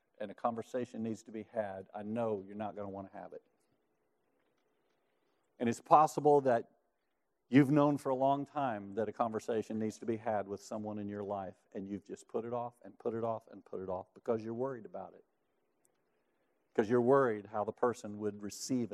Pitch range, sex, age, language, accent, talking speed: 110-150 Hz, male, 50-69, English, American, 210 wpm